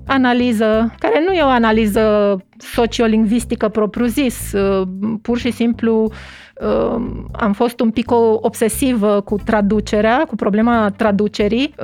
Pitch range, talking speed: 215-245 Hz, 105 wpm